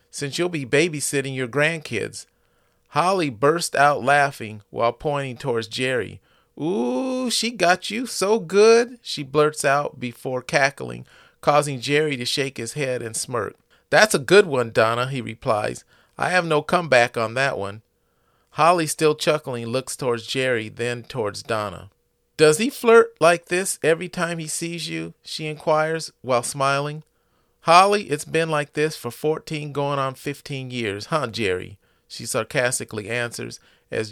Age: 40-59